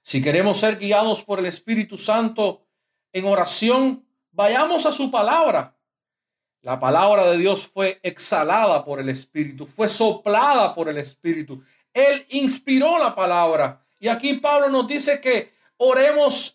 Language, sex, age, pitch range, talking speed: Spanish, male, 50-69, 170-255 Hz, 140 wpm